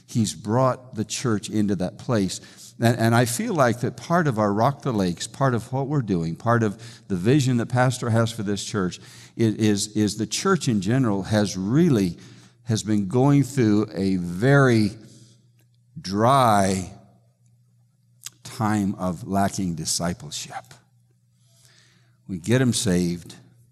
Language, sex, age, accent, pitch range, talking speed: English, male, 60-79, American, 100-125 Hz, 145 wpm